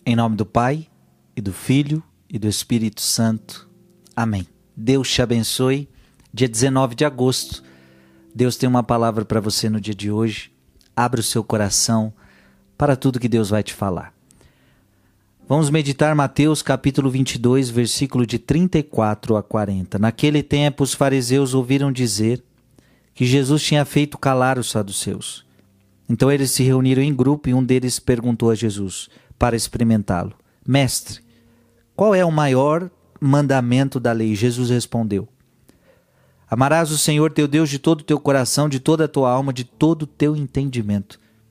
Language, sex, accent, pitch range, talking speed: Portuguese, male, Brazilian, 110-135 Hz, 155 wpm